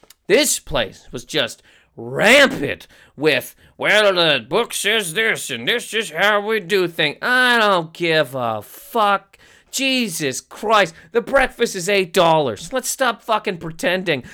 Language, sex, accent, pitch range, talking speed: English, male, American, 155-235 Hz, 140 wpm